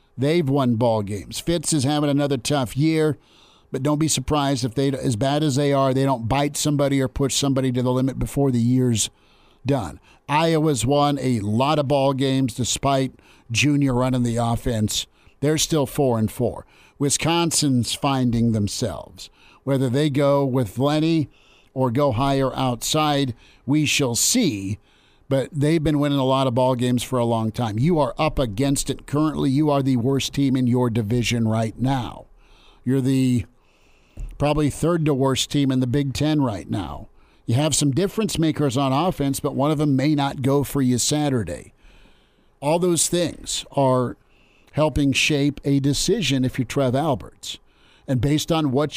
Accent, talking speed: American, 175 wpm